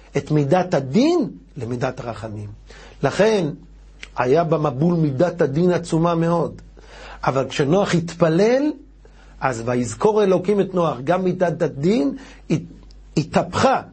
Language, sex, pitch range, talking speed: Hebrew, male, 135-170 Hz, 105 wpm